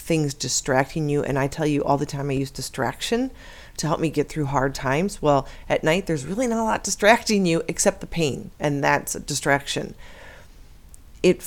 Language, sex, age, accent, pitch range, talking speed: English, female, 40-59, American, 135-165 Hz, 200 wpm